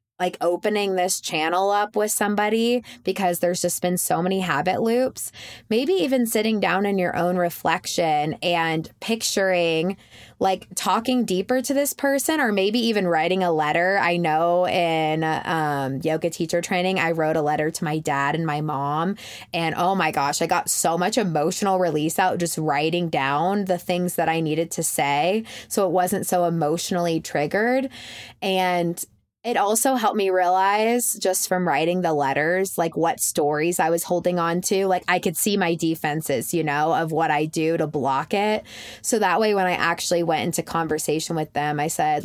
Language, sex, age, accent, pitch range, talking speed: English, female, 20-39, American, 165-195 Hz, 180 wpm